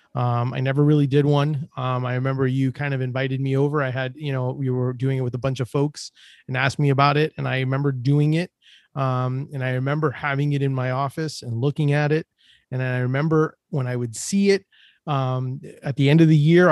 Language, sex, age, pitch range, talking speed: English, male, 30-49, 130-150 Hz, 235 wpm